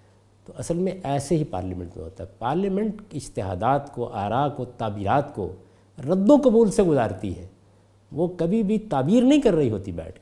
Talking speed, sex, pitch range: 180 wpm, male, 100-160 Hz